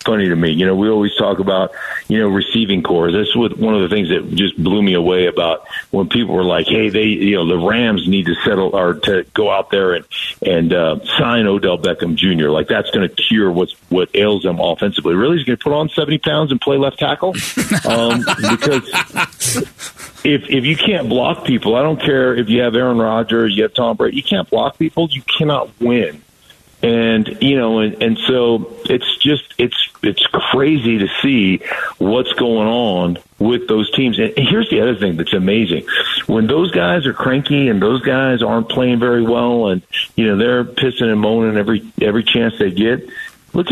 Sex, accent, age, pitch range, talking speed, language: male, American, 50-69, 105-140 Hz, 205 wpm, English